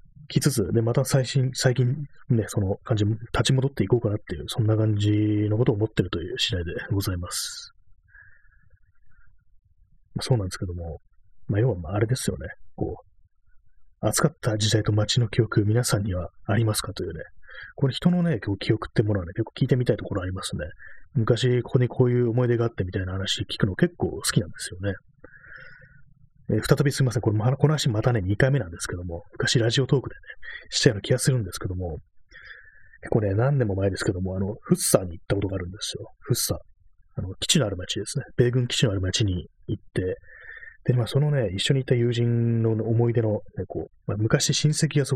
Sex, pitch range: male, 100-130 Hz